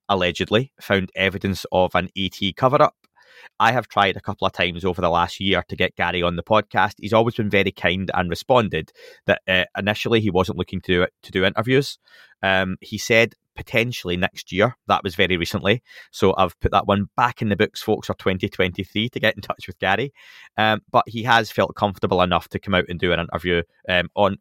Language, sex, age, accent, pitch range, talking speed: English, male, 20-39, British, 90-105 Hz, 215 wpm